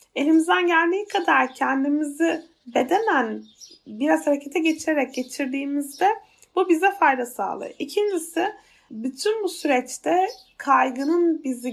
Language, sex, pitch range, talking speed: Turkish, female, 255-345 Hz, 95 wpm